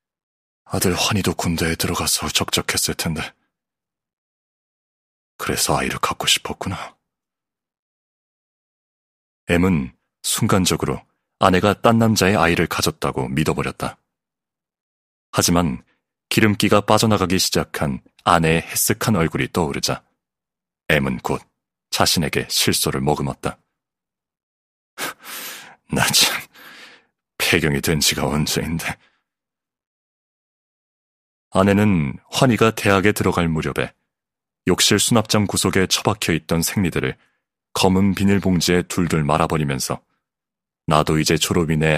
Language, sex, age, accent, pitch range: Korean, male, 40-59, native, 75-100 Hz